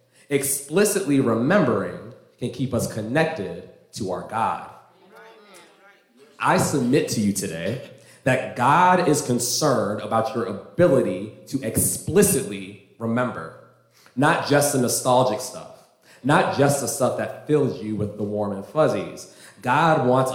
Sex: male